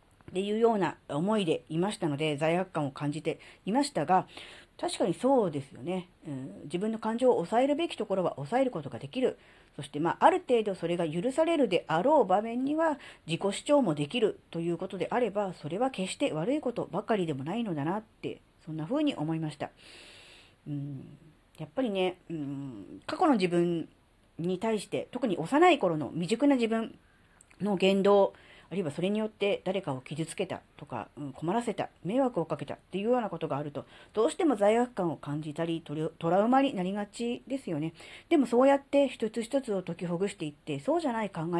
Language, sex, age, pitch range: Japanese, female, 40-59, 160-255 Hz